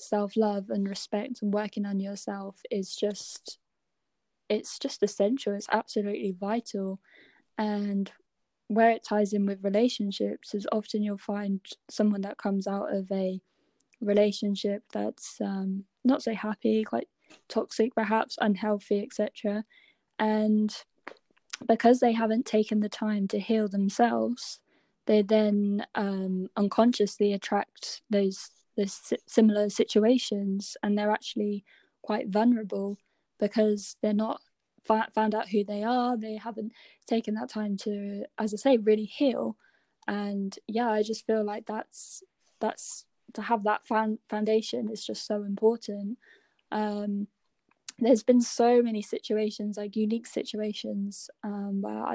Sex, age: female, 10-29